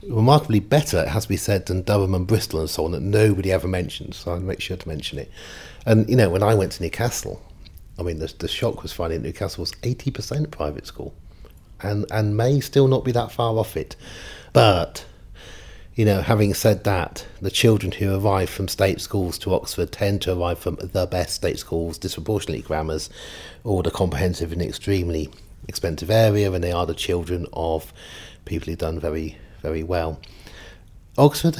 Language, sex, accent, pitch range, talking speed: English, male, British, 90-110 Hz, 190 wpm